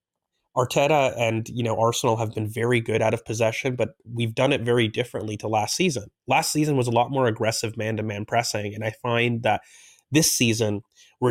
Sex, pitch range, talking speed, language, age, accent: male, 110-130 Hz, 195 wpm, English, 30-49, American